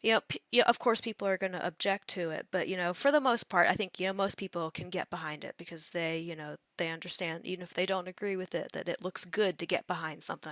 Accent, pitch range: American, 170-200 Hz